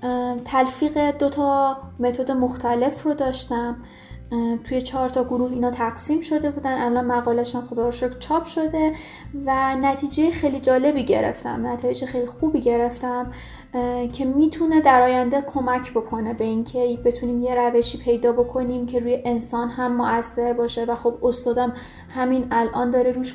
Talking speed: 145 wpm